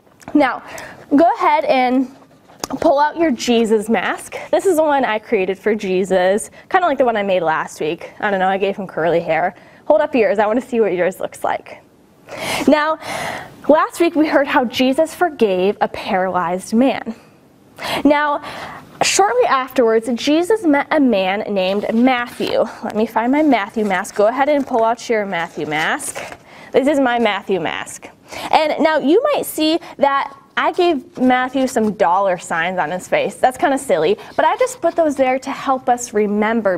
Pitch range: 205-300 Hz